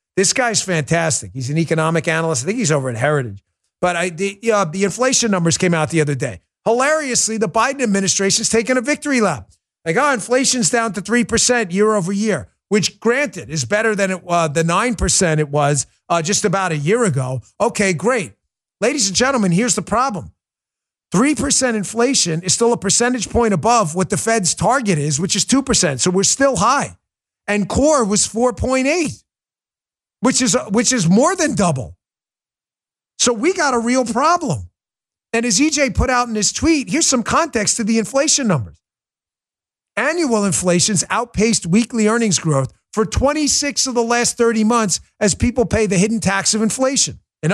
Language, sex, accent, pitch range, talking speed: English, male, American, 175-245 Hz, 180 wpm